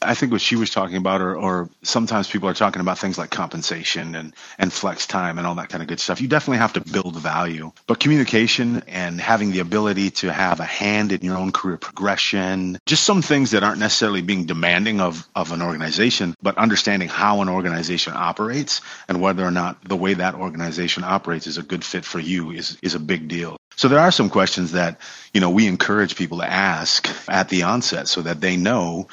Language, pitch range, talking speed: English, 85-100 Hz, 220 wpm